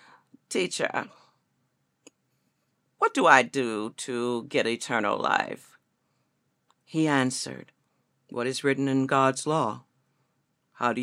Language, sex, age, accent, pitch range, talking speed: English, female, 50-69, American, 130-185 Hz, 105 wpm